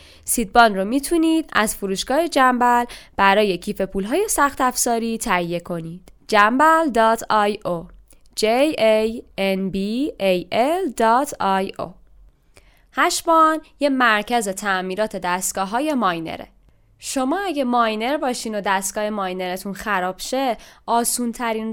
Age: 10-29